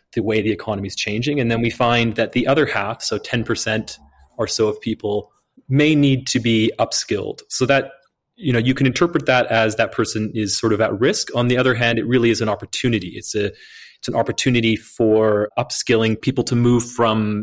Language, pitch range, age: English, 105-125 Hz, 30-49